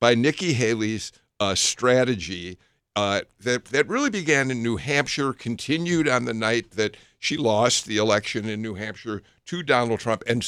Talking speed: 165 wpm